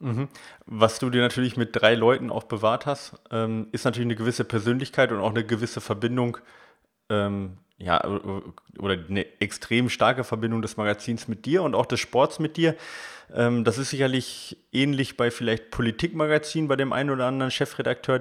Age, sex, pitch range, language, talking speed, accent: 30-49, male, 110-130 Hz, German, 170 wpm, German